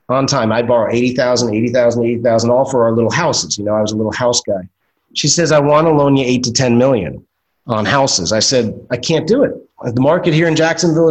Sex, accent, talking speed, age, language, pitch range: male, American, 240 wpm, 30-49, English, 120-160 Hz